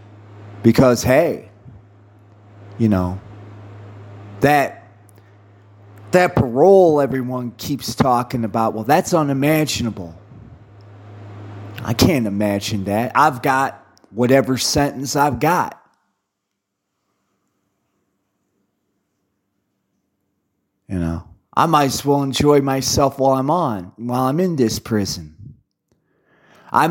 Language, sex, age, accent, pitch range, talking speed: English, male, 30-49, American, 100-130 Hz, 90 wpm